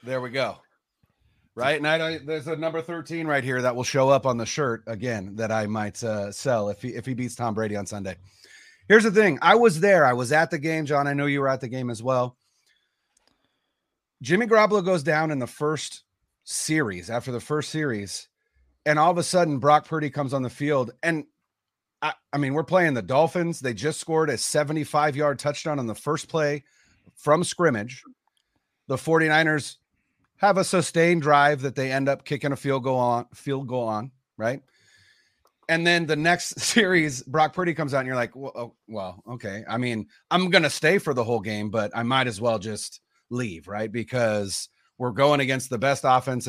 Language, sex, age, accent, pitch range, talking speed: English, male, 30-49, American, 120-160 Hz, 205 wpm